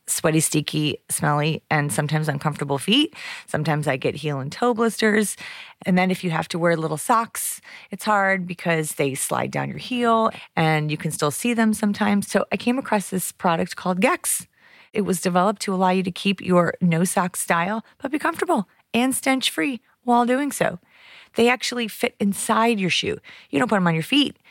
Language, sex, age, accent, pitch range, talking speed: English, female, 30-49, American, 165-220 Hz, 190 wpm